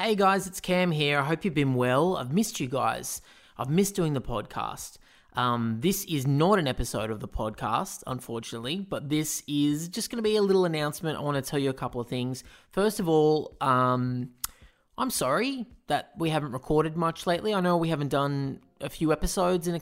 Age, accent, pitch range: 20-39, Australian, 125-160 Hz